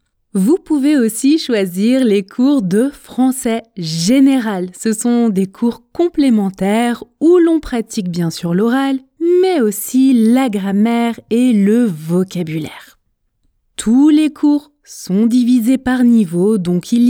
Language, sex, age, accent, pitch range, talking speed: French, female, 20-39, French, 205-285 Hz, 125 wpm